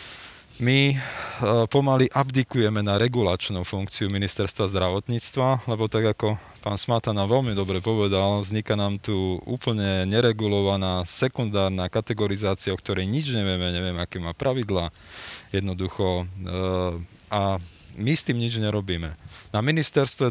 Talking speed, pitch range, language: 125 wpm, 95-120 Hz, Slovak